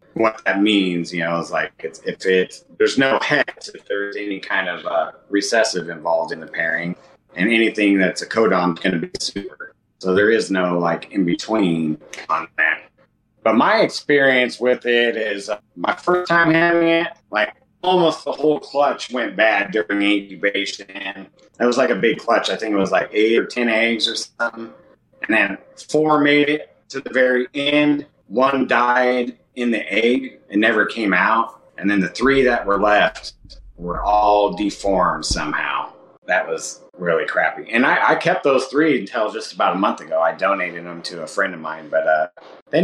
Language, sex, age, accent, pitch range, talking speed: English, male, 30-49, American, 100-140 Hz, 190 wpm